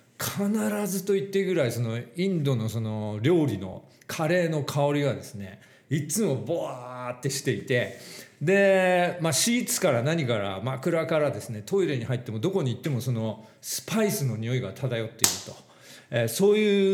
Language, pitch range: Japanese, 115-190 Hz